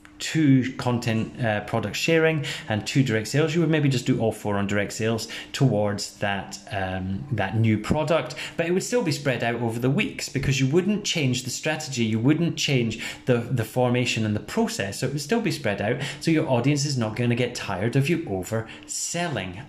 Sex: male